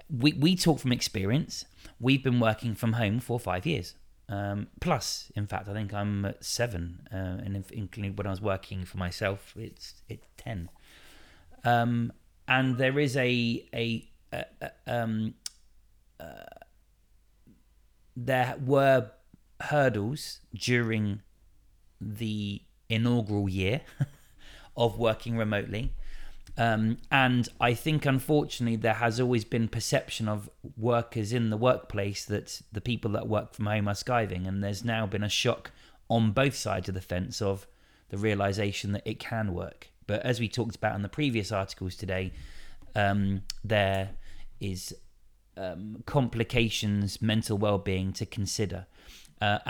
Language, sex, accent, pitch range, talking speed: English, male, British, 100-120 Hz, 140 wpm